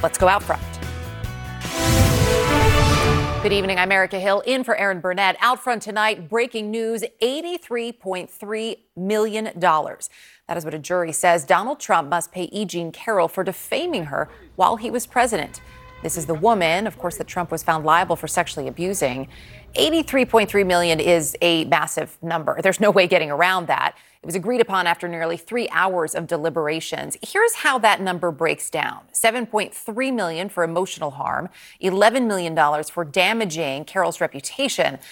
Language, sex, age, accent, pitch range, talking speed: English, female, 30-49, American, 170-225 Hz, 160 wpm